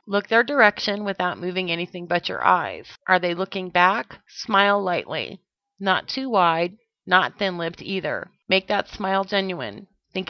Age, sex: 40-59, female